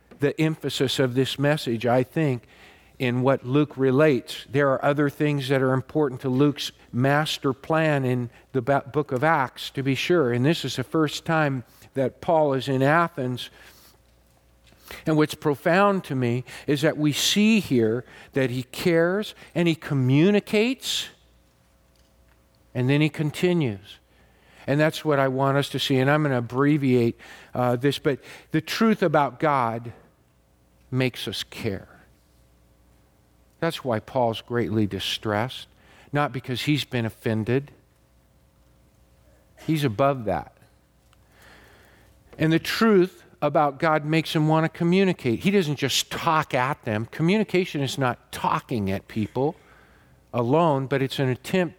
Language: English